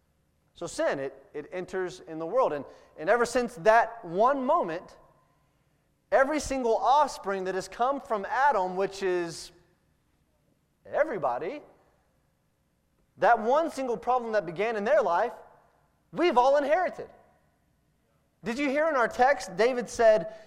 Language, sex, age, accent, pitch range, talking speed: English, male, 30-49, American, 205-285 Hz, 135 wpm